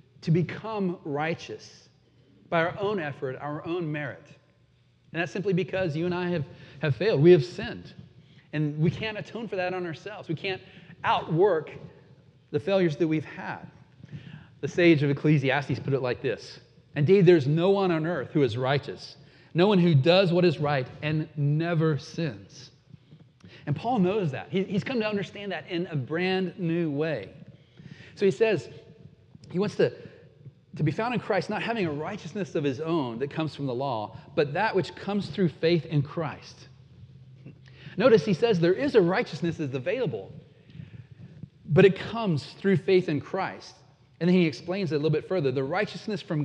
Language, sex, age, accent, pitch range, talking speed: English, male, 40-59, American, 140-180 Hz, 180 wpm